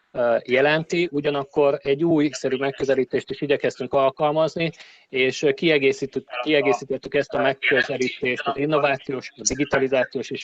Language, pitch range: Hungarian, 130-150 Hz